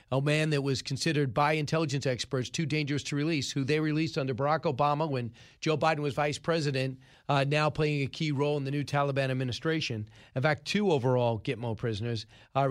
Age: 40-59